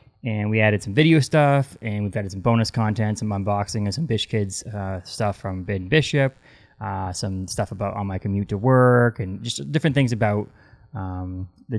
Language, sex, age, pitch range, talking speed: English, male, 20-39, 100-115 Hz, 200 wpm